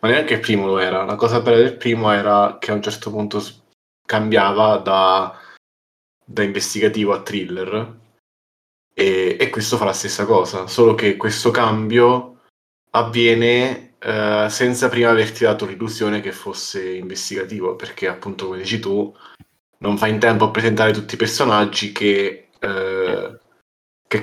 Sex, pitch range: male, 105-115 Hz